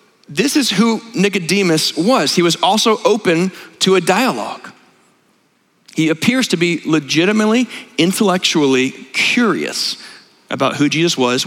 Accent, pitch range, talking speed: American, 150-200 Hz, 120 wpm